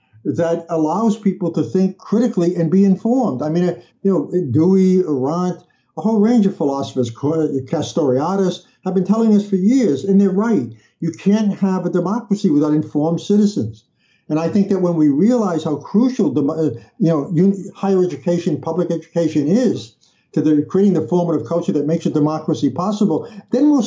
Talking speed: 165 wpm